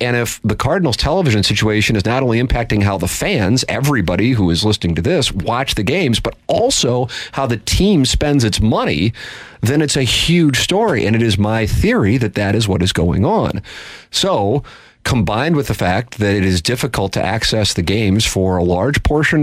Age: 40-59